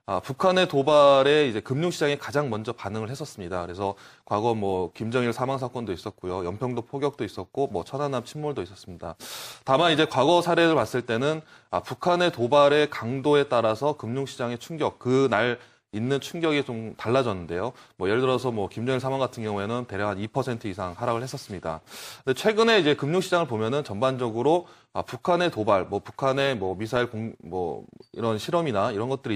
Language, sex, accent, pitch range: Korean, male, native, 110-155 Hz